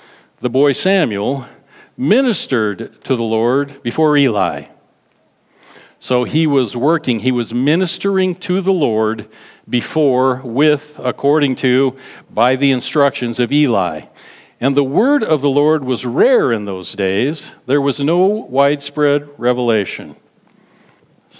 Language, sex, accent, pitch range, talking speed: English, male, American, 125-155 Hz, 125 wpm